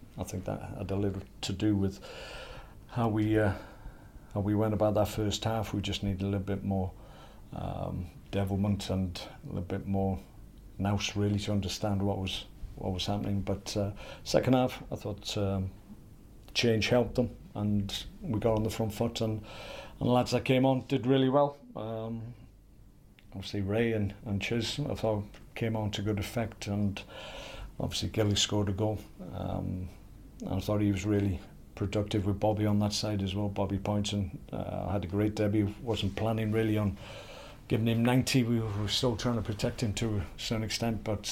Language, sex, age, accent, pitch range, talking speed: English, male, 50-69, British, 100-110 Hz, 185 wpm